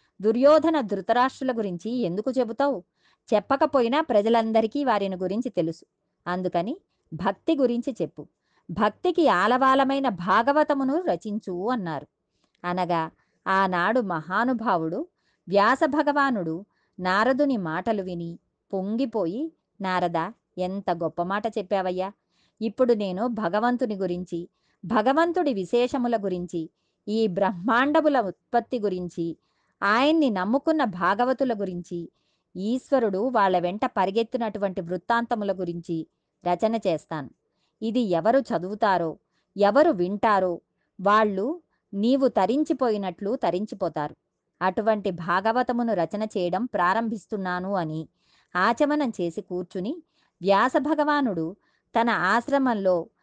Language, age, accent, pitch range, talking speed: Telugu, 20-39, native, 180-255 Hz, 85 wpm